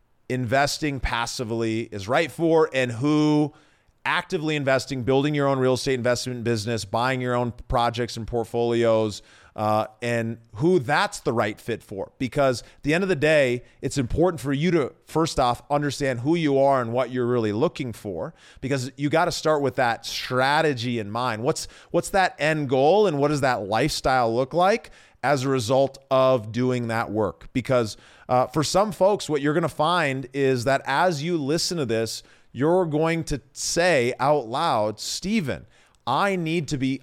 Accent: American